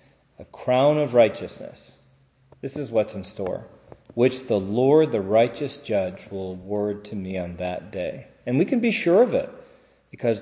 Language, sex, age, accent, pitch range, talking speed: English, male, 40-59, American, 110-140 Hz, 175 wpm